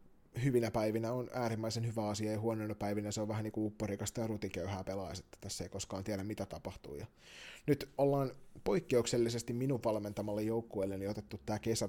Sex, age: male, 30-49